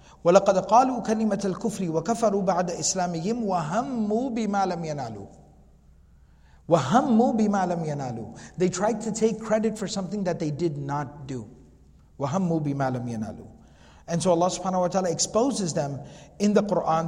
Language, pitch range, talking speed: English, 155-205 Hz, 135 wpm